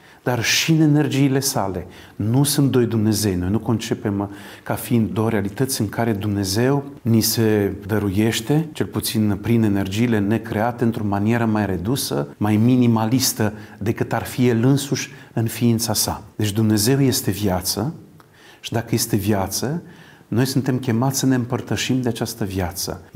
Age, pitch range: 40-59, 105-135 Hz